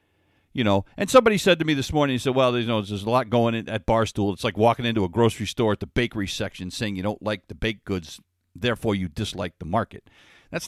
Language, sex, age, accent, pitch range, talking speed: English, male, 50-69, American, 95-130 Hz, 260 wpm